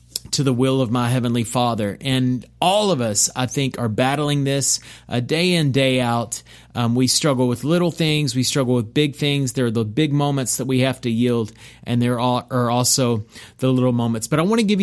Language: English